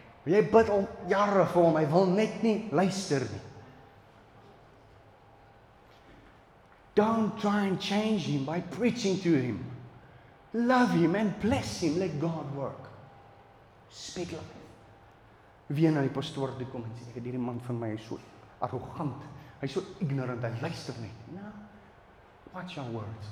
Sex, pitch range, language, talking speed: male, 115-170 Hz, English, 95 wpm